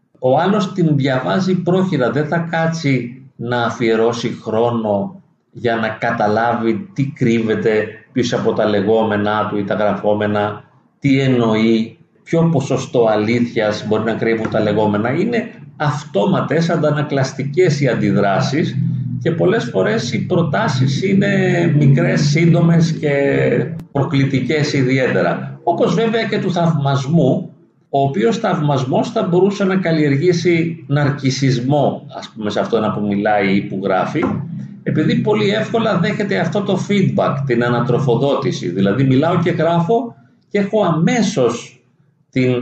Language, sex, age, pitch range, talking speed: Greek, male, 40-59, 115-165 Hz, 125 wpm